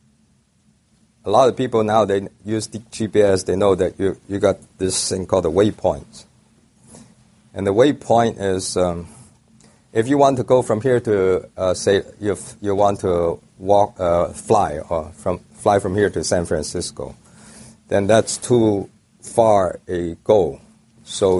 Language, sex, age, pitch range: English, male, 50-69, 85-105 Hz